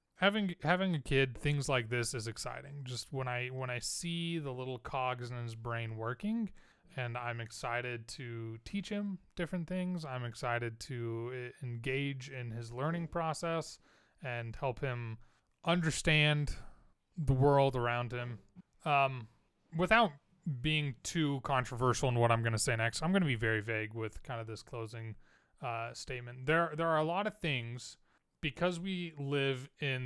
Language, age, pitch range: English, 30-49, 120-150 Hz